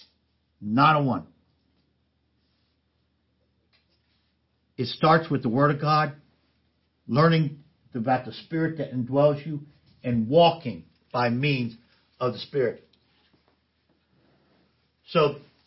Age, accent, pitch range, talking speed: 60-79, American, 120-190 Hz, 95 wpm